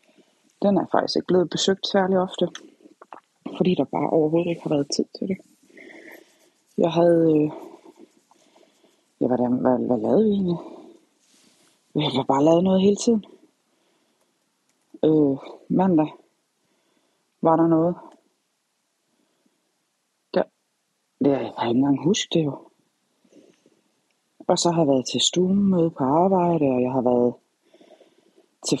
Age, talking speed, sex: 30-49, 125 wpm, female